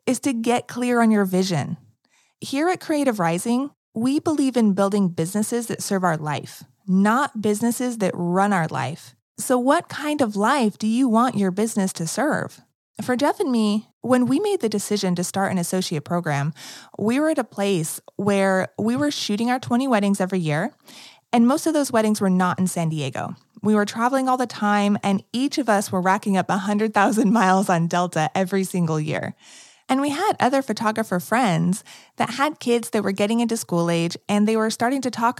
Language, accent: English, American